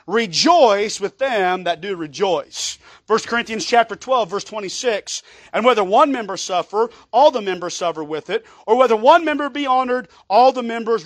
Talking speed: 175 wpm